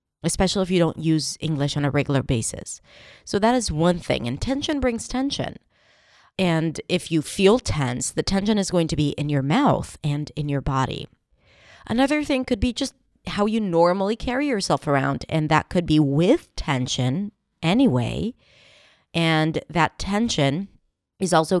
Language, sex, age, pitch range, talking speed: English, female, 30-49, 155-215 Hz, 165 wpm